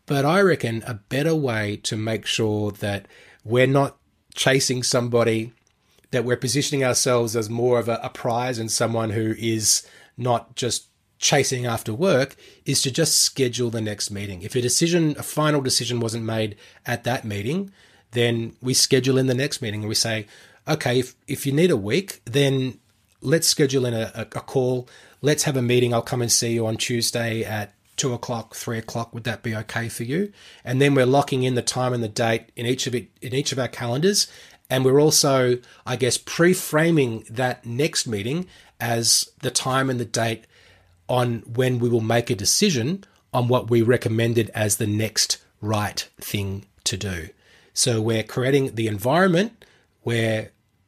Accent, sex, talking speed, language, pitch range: Australian, male, 185 wpm, English, 110-135 Hz